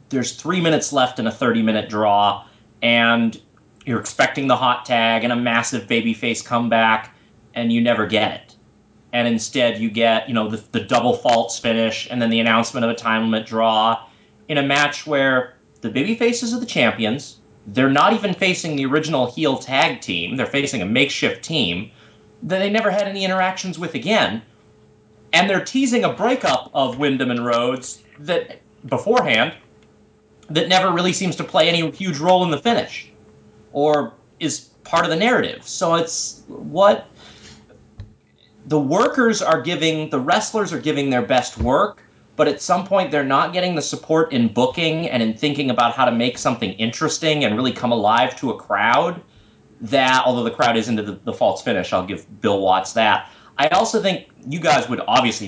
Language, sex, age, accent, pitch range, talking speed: English, male, 30-49, American, 115-175 Hz, 180 wpm